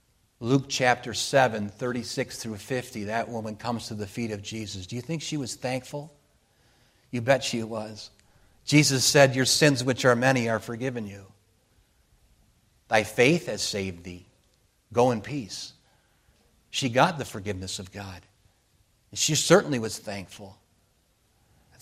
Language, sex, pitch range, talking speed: English, male, 110-135 Hz, 145 wpm